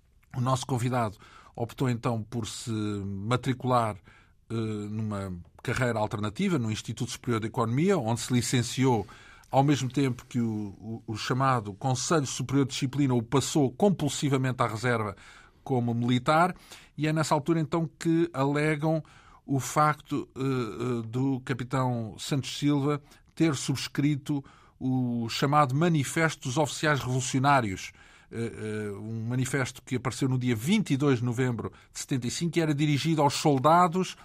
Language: Portuguese